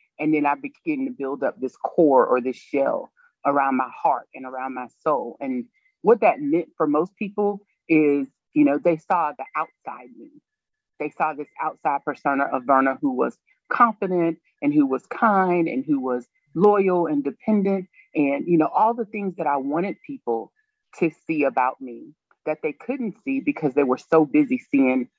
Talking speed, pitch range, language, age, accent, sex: 185 wpm, 145-225 Hz, English, 30-49, American, female